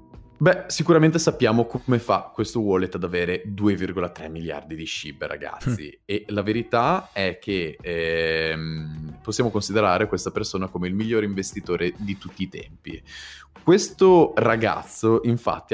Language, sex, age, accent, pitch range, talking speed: Italian, male, 20-39, native, 90-120 Hz, 135 wpm